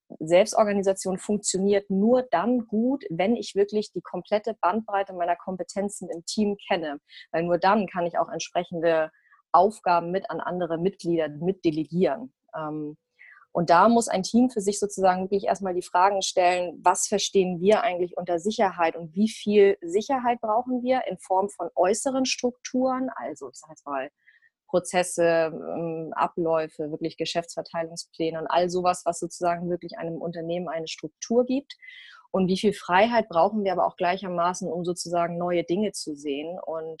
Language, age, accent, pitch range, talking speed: German, 20-39, German, 165-205 Hz, 155 wpm